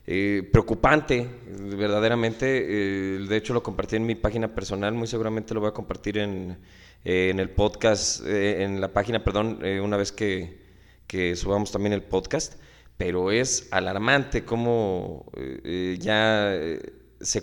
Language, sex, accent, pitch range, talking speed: Spanish, male, Mexican, 95-120 Hz, 150 wpm